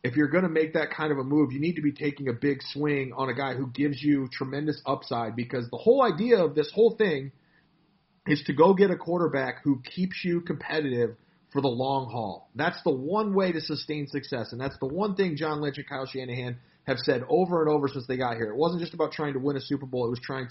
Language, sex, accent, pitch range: English, male, American, 135-170 Hz